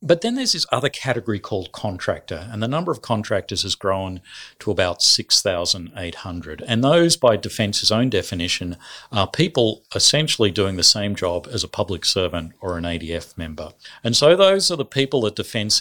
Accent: Australian